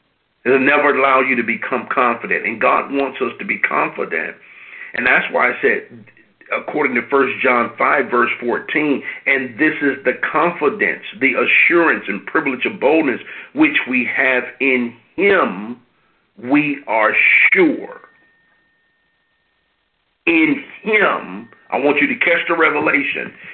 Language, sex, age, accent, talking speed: English, male, 50-69, American, 140 wpm